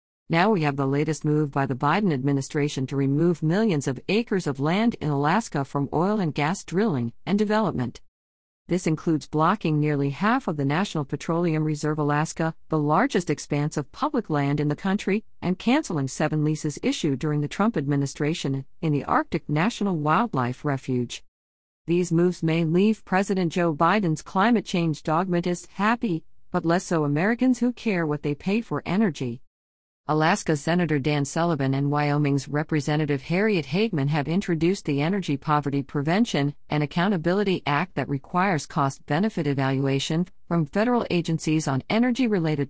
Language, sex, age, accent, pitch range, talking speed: English, female, 50-69, American, 140-190 Hz, 155 wpm